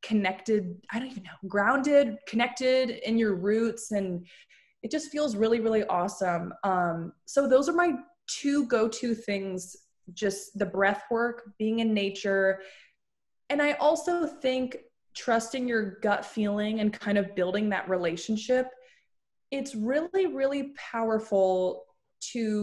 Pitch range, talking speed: 195-255 Hz, 135 wpm